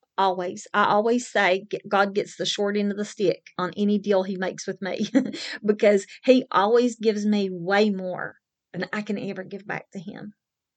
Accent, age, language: American, 40-59, English